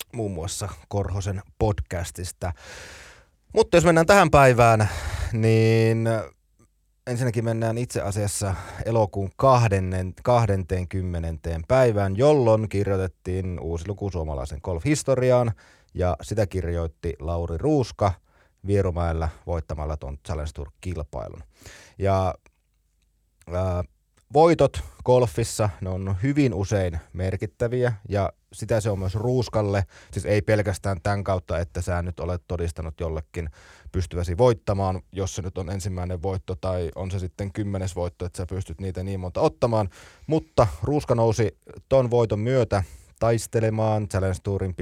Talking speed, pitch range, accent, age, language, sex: 120 wpm, 85-110 Hz, native, 30-49, Finnish, male